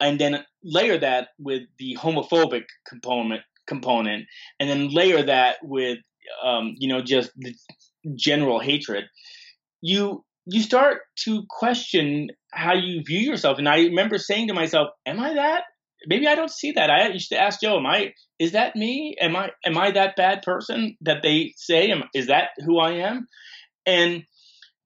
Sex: male